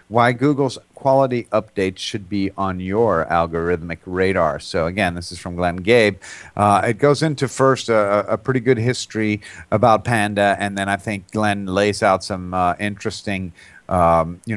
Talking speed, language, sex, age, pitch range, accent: 170 wpm, English, male, 40-59, 95-110 Hz, American